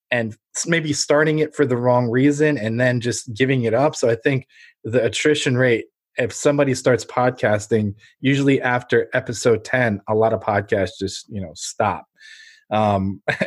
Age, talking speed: 20-39, 165 wpm